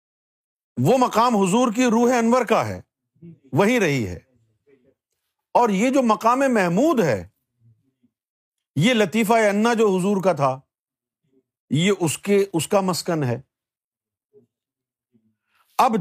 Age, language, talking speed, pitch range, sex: 50-69, Urdu, 120 wpm, 130-200 Hz, male